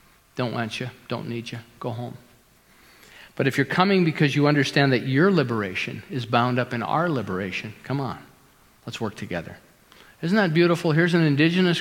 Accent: American